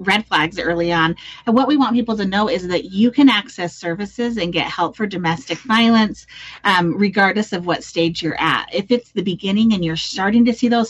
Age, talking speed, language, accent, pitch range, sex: 30-49, 220 wpm, English, American, 170-210 Hz, female